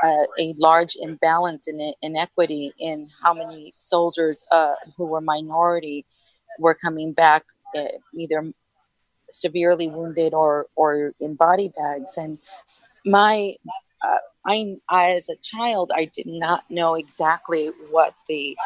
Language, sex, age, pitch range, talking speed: English, female, 40-59, 160-190 Hz, 135 wpm